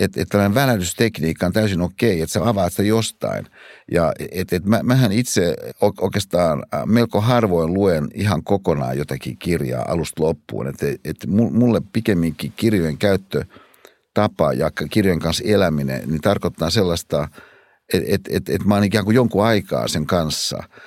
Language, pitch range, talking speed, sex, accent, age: Finnish, 85-115 Hz, 150 wpm, male, native, 60-79